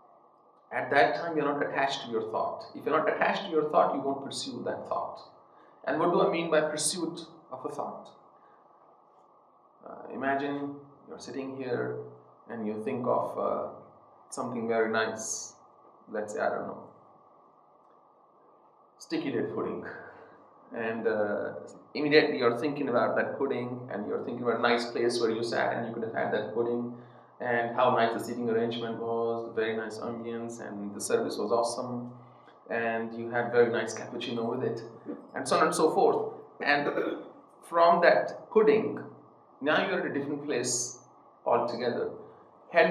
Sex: male